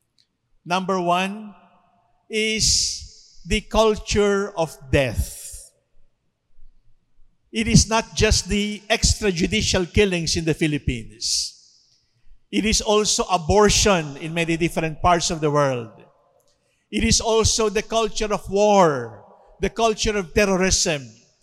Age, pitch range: 50-69, 170-220 Hz